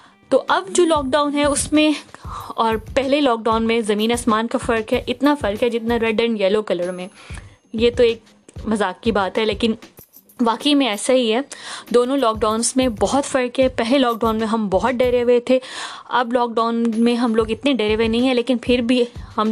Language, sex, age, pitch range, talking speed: Urdu, female, 20-39, 225-255 Hz, 220 wpm